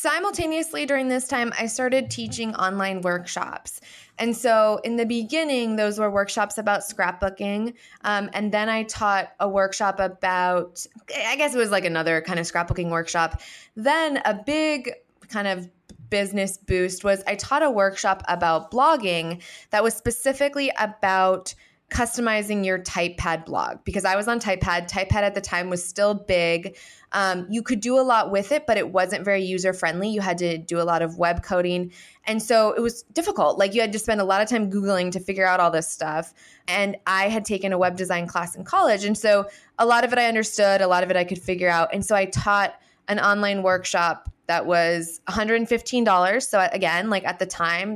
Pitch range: 180-220 Hz